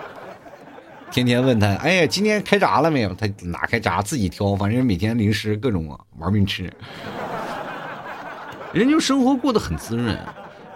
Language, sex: Chinese, male